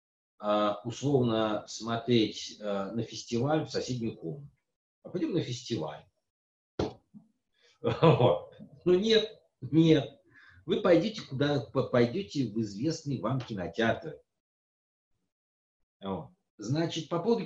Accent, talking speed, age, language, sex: native, 85 wpm, 50-69, Russian, male